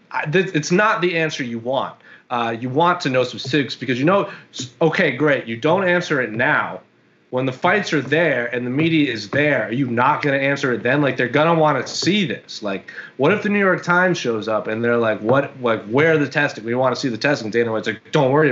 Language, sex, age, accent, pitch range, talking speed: English, male, 30-49, American, 120-160 Hz, 255 wpm